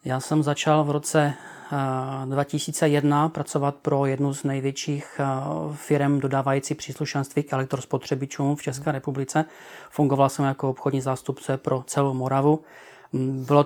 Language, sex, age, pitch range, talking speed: Czech, male, 30-49, 135-150 Hz, 125 wpm